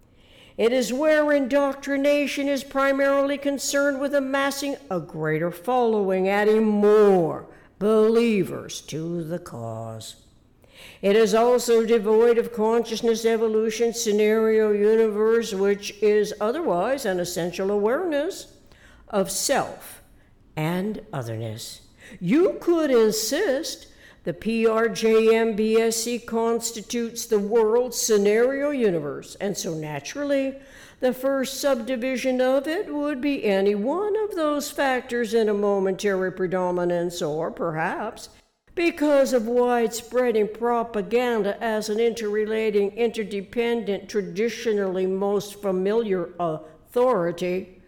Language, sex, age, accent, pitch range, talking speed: English, female, 60-79, American, 195-255 Hz, 100 wpm